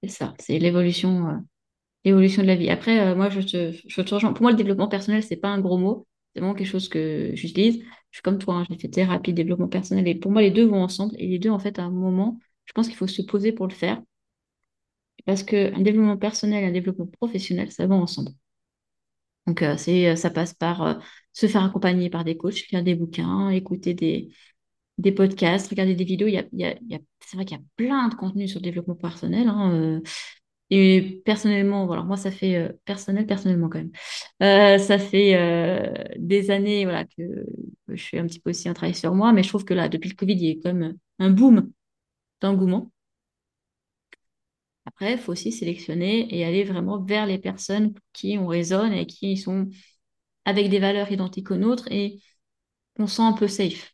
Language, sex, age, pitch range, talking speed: French, female, 20-39, 175-205 Hz, 215 wpm